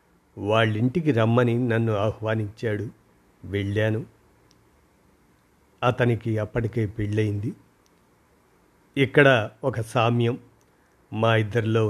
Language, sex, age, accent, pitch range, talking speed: Telugu, male, 50-69, native, 110-130 Hz, 65 wpm